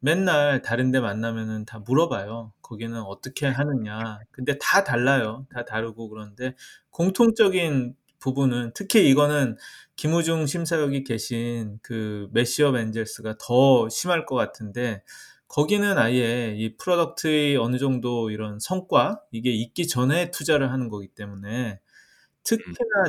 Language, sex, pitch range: Korean, male, 115-155 Hz